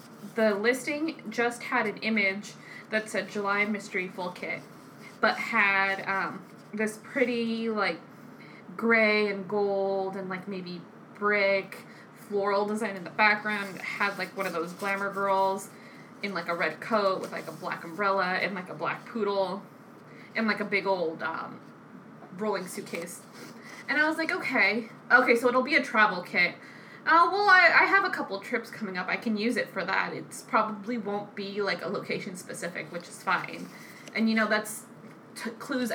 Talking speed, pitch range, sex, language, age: 170 wpm, 200-240 Hz, female, English, 20-39